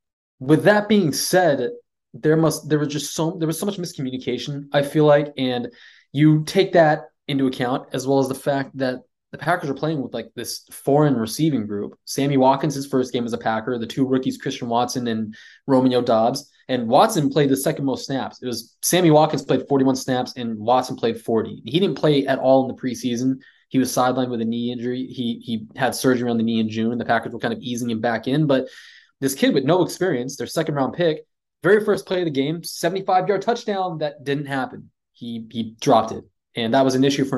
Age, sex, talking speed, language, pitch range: 20-39, male, 220 wpm, English, 125-155 Hz